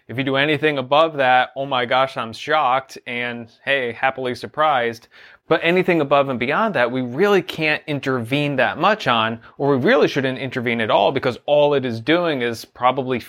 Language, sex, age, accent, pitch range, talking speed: English, male, 30-49, American, 120-155 Hz, 190 wpm